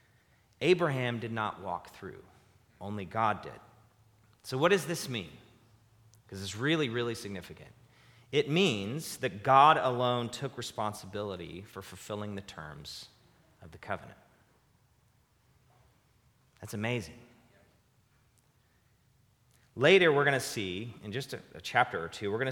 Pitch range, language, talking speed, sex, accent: 100-130 Hz, English, 130 wpm, male, American